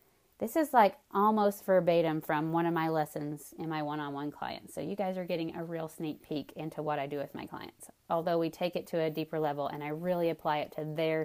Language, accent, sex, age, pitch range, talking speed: English, American, female, 30-49, 165-220 Hz, 240 wpm